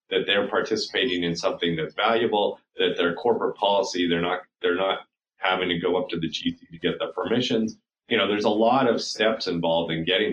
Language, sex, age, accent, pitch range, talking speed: English, male, 40-59, American, 85-110 Hz, 210 wpm